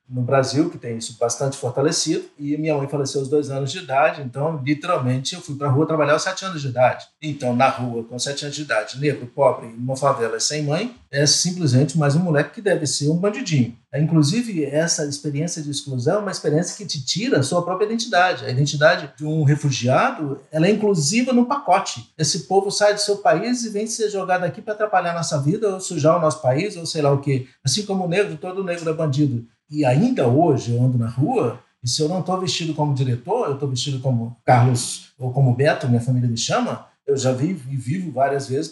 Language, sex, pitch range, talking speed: Portuguese, male, 135-180 Hz, 225 wpm